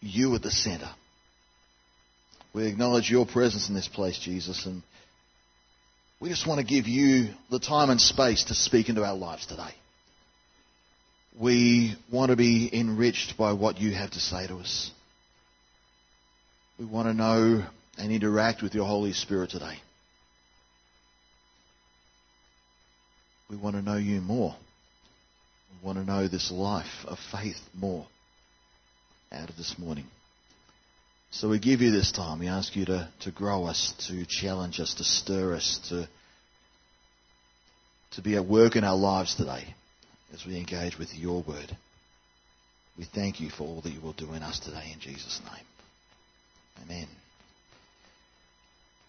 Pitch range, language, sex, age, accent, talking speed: 90-115 Hz, English, male, 40-59, Australian, 150 wpm